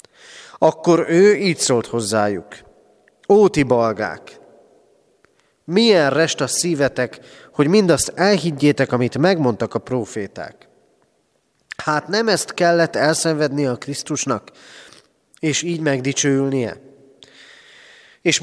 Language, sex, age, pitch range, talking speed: Hungarian, male, 30-49, 125-170 Hz, 95 wpm